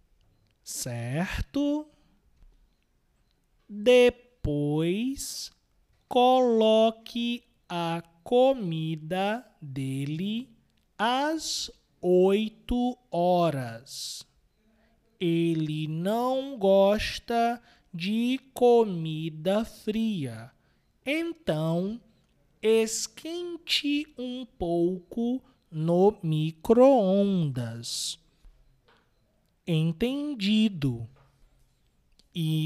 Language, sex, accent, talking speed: Portuguese, male, Brazilian, 40 wpm